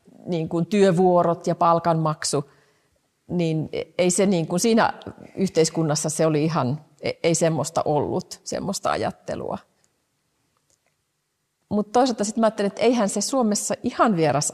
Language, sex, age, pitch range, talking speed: Finnish, female, 40-59, 155-205 Hz, 130 wpm